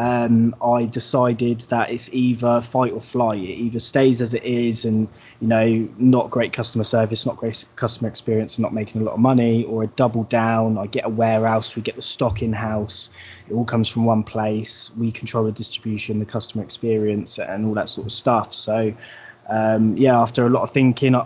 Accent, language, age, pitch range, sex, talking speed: British, English, 20-39, 110-120 Hz, male, 210 wpm